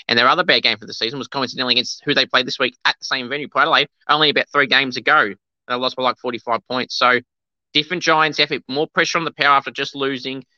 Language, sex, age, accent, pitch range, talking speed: English, male, 20-39, Australian, 125-155 Hz, 250 wpm